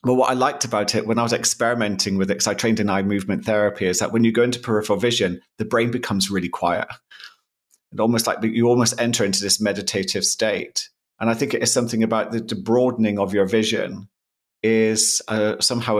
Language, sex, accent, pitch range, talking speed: English, male, British, 105-120 Hz, 215 wpm